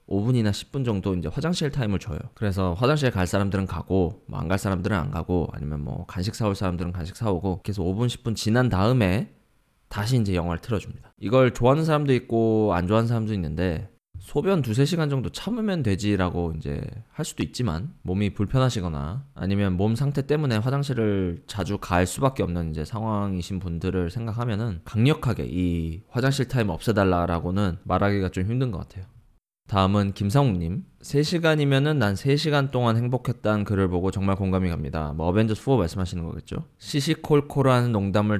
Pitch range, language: 90-125 Hz, Korean